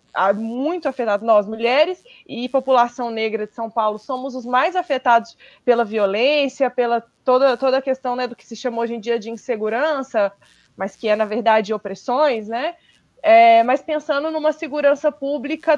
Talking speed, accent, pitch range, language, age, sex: 165 wpm, Brazilian, 230-275 Hz, Portuguese, 20-39, female